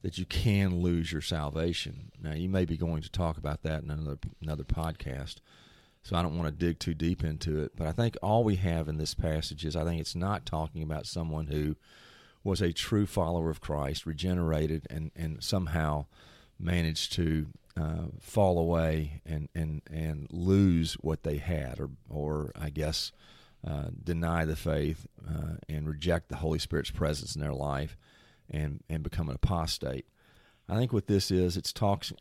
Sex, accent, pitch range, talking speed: male, American, 75-90 Hz, 185 wpm